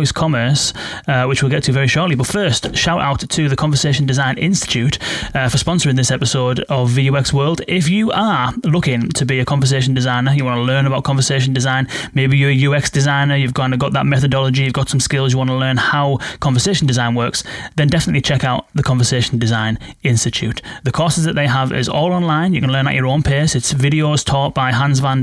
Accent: British